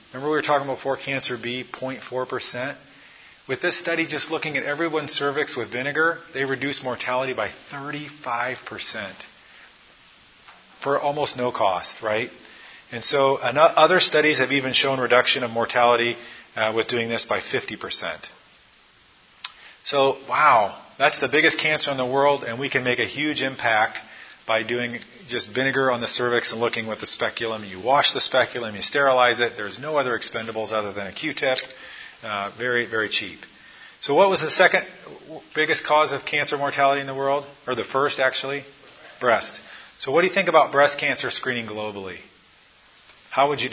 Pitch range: 120-140 Hz